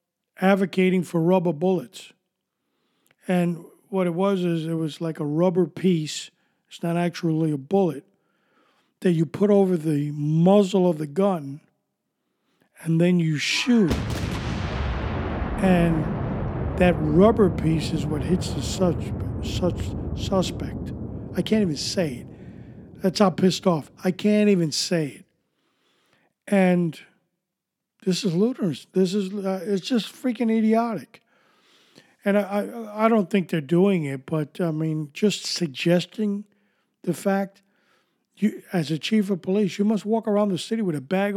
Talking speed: 145 wpm